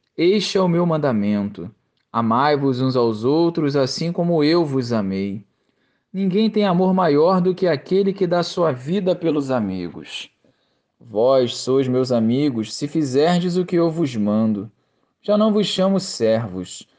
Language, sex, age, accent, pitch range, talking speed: Portuguese, male, 20-39, Brazilian, 125-180 Hz, 150 wpm